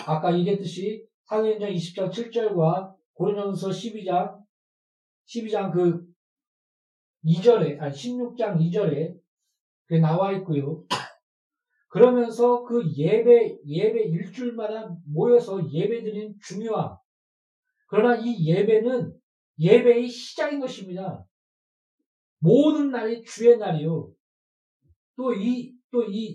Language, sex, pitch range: Korean, male, 175-235 Hz